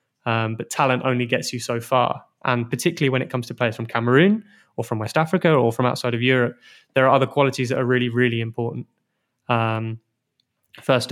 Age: 20-39